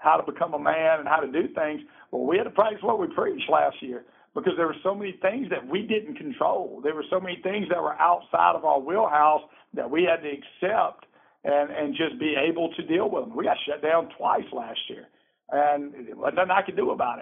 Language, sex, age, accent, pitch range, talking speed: English, male, 50-69, American, 150-180 Hz, 235 wpm